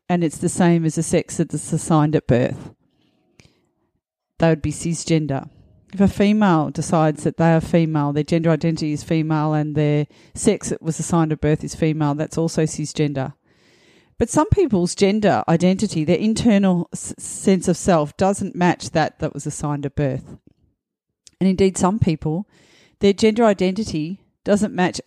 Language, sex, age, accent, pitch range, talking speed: English, female, 40-59, Australian, 155-190 Hz, 170 wpm